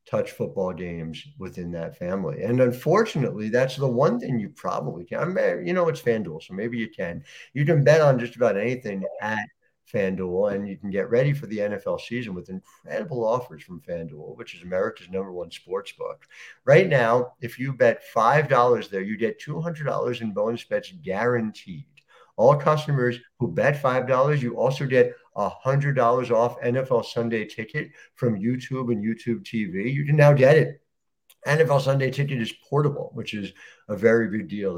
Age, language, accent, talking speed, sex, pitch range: 50-69, English, American, 175 wpm, male, 105-145 Hz